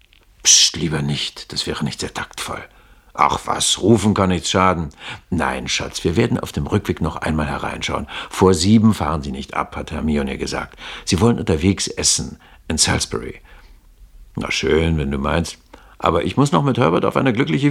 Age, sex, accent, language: 60-79, male, German, German